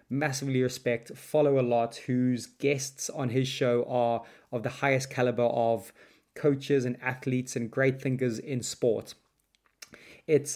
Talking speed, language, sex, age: 140 wpm, English, male, 20-39